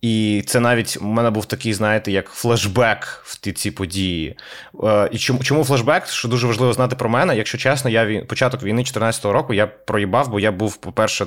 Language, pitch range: Ukrainian, 105-125 Hz